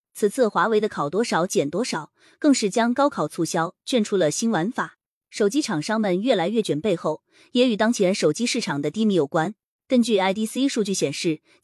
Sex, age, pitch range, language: female, 20-39, 170-245 Hz, Chinese